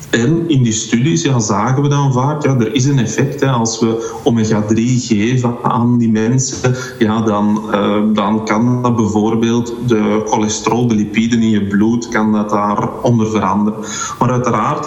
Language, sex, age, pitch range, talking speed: Dutch, male, 30-49, 110-130 Hz, 165 wpm